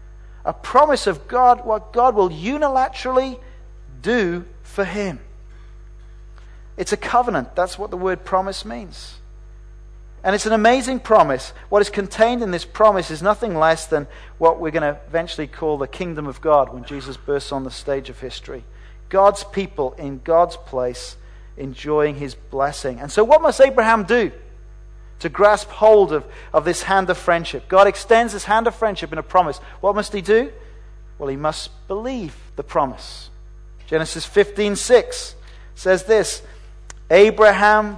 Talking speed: 160 wpm